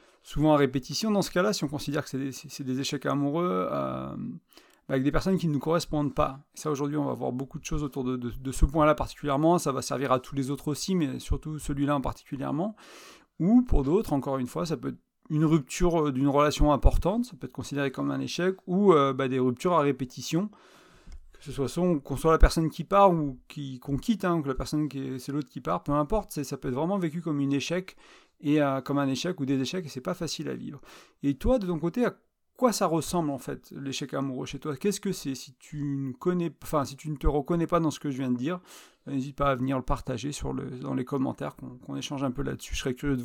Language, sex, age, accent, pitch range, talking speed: French, male, 40-59, French, 135-160 Hz, 260 wpm